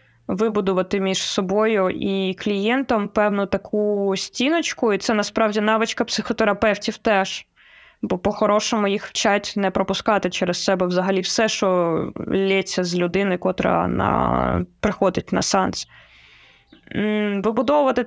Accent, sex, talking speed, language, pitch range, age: native, female, 115 wpm, Ukrainian, 195-230 Hz, 20-39